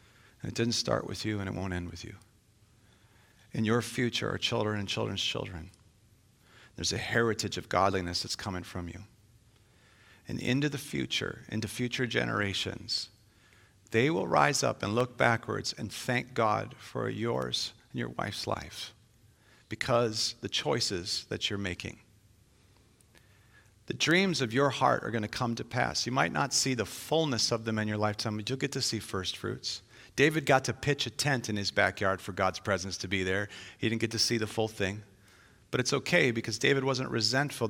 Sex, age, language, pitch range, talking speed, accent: male, 40-59, English, 100-125 Hz, 185 wpm, American